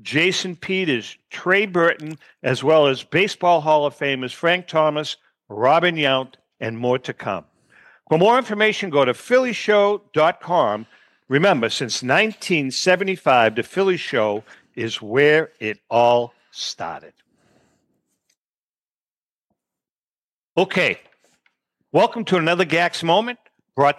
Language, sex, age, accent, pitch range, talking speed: English, male, 60-79, American, 125-170 Hz, 110 wpm